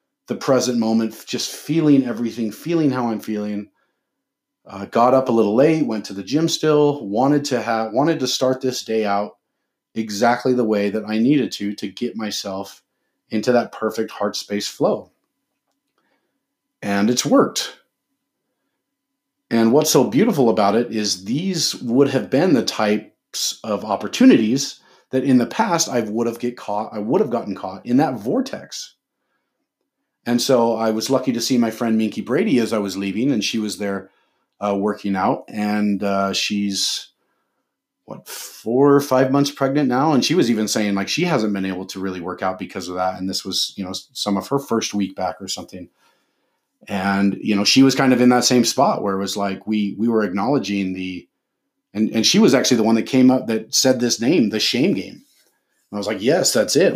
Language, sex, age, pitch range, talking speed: English, male, 40-59, 100-125 Hz, 195 wpm